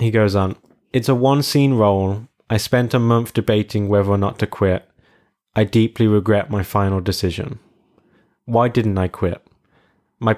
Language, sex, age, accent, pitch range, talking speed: English, male, 20-39, British, 100-120 Hz, 170 wpm